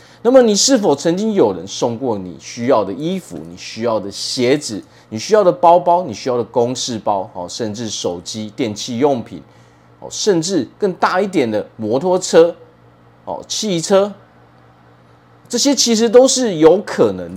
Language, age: Chinese, 30-49